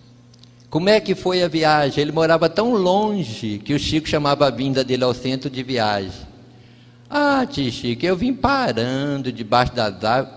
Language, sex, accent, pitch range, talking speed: Portuguese, male, Brazilian, 120-155 Hz, 170 wpm